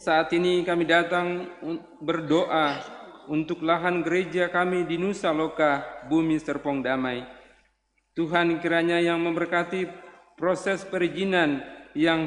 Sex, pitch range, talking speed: male, 140-170 Hz, 110 wpm